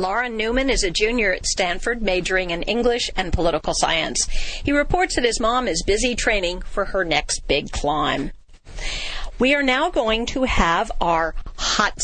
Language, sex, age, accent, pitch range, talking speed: English, female, 50-69, American, 175-245 Hz, 170 wpm